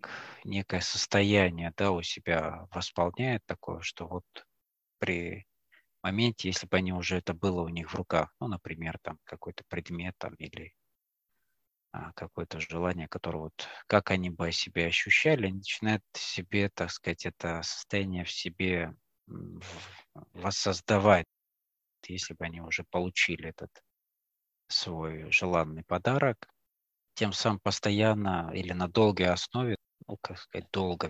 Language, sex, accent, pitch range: Russian, male, native, 85-100 Hz